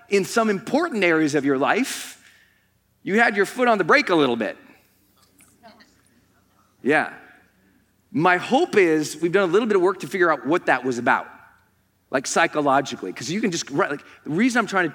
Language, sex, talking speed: English, male, 195 wpm